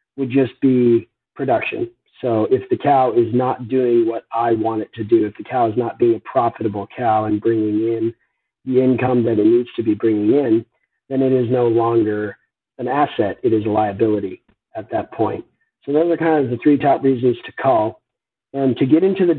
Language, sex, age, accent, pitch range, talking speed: English, male, 40-59, American, 110-140 Hz, 210 wpm